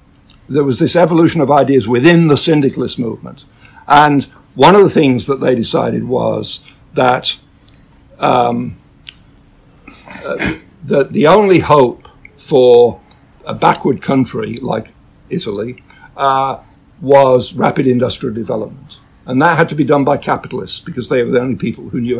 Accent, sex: British, male